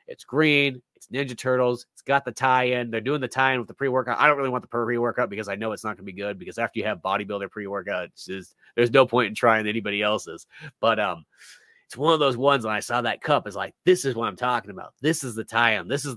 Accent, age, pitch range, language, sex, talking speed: American, 30-49, 110-130 Hz, English, male, 255 wpm